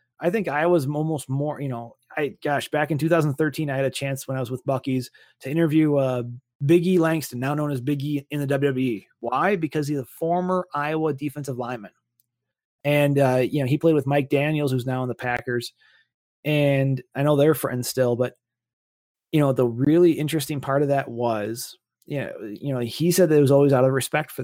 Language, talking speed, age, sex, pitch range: English, 210 wpm, 30-49, male, 130-150 Hz